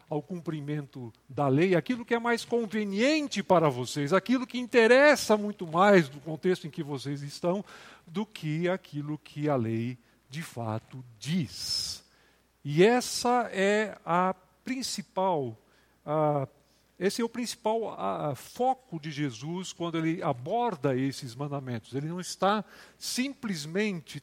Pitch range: 140-205 Hz